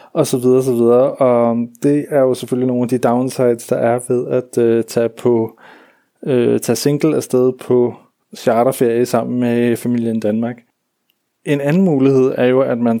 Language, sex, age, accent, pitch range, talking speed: Danish, male, 30-49, native, 120-130 Hz, 180 wpm